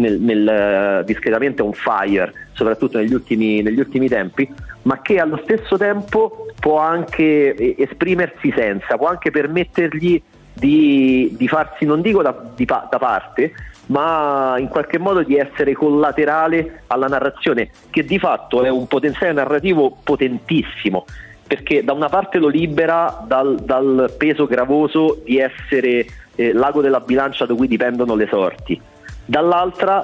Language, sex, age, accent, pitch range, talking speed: Italian, male, 30-49, native, 120-160 Hz, 135 wpm